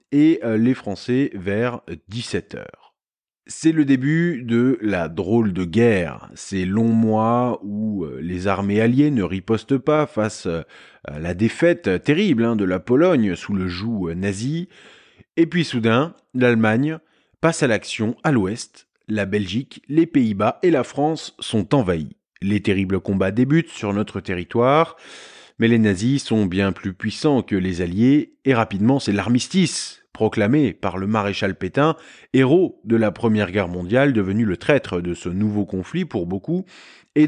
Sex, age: male, 30-49